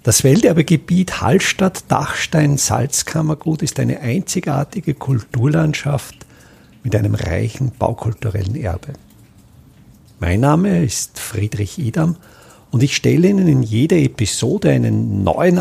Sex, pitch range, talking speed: male, 125-185 Hz, 100 wpm